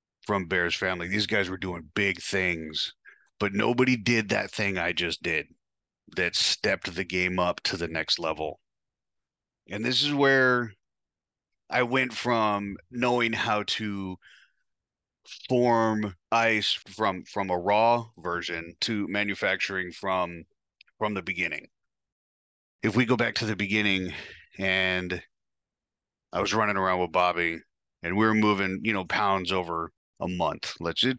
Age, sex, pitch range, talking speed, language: 30-49, male, 90-110 Hz, 140 wpm, English